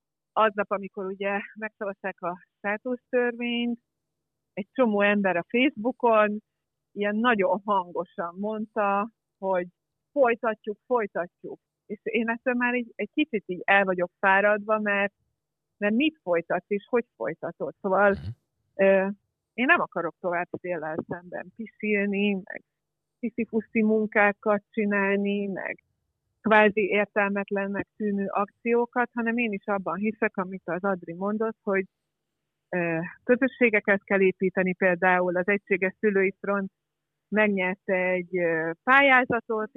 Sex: female